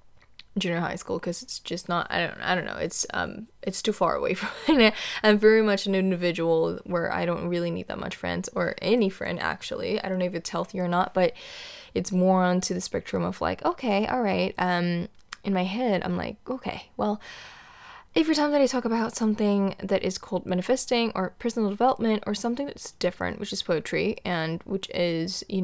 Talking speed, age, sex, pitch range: 210 wpm, 10-29, female, 180-215 Hz